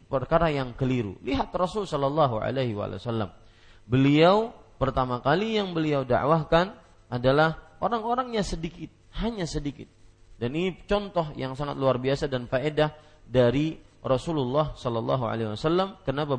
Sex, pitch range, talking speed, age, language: male, 115-175 Hz, 110 wpm, 30-49, Malay